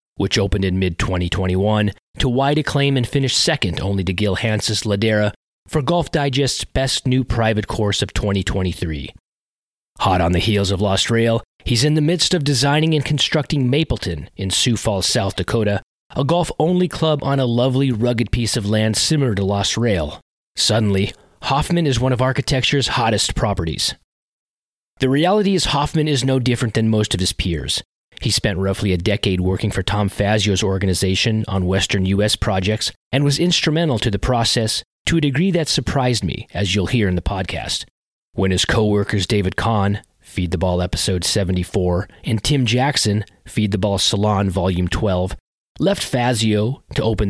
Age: 30-49